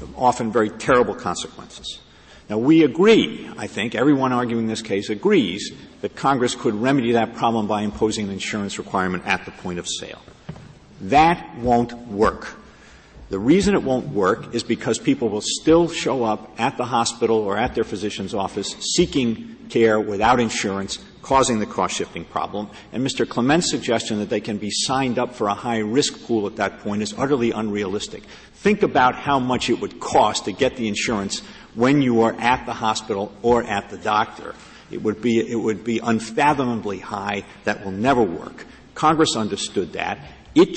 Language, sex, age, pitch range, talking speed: English, male, 50-69, 105-130 Hz, 175 wpm